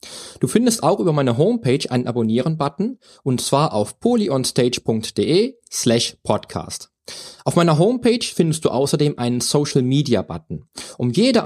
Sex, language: male, German